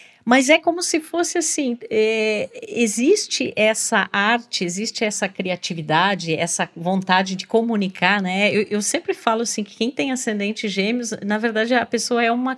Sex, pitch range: female, 190-255 Hz